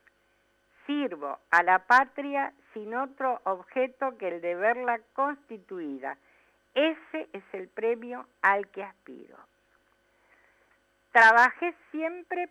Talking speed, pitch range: 100 wpm, 175-250 Hz